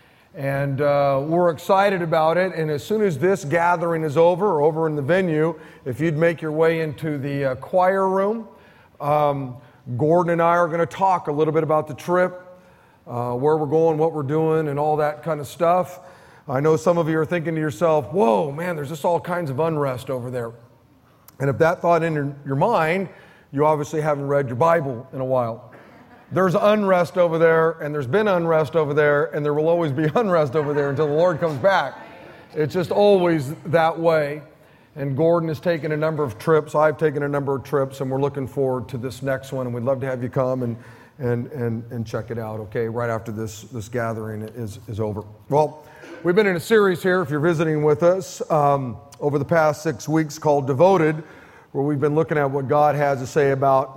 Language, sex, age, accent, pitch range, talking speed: English, male, 40-59, American, 140-170 Hz, 215 wpm